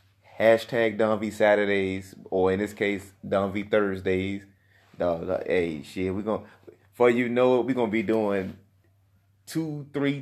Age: 20-39